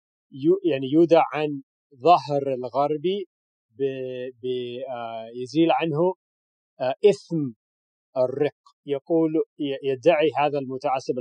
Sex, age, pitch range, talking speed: male, 40-59, 120-165 Hz, 70 wpm